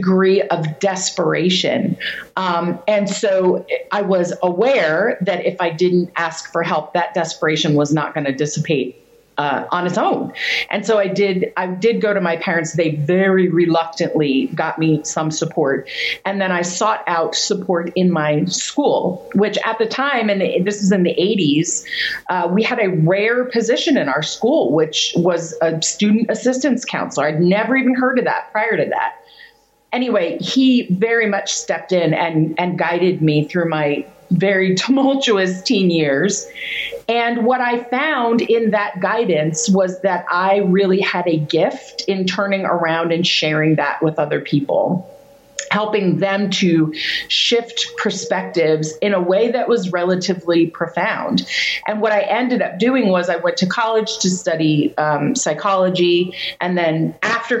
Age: 30-49